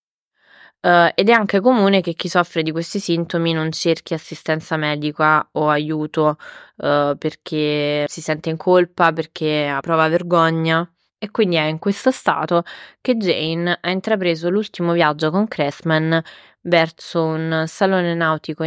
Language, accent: Italian, native